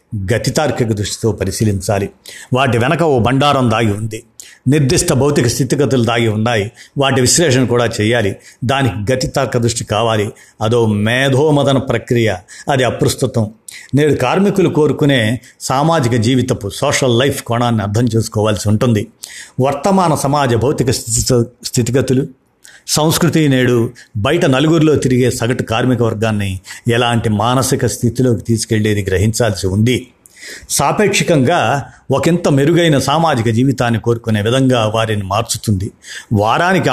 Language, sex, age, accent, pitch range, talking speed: Telugu, male, 50-69, native, 115-140 Hz, 105 wpm